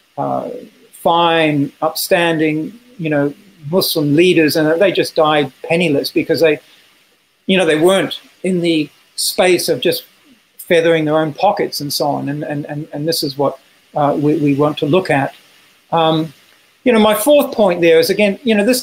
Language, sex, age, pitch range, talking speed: English, male, 50-69, 155-190 Hz, 180 wpm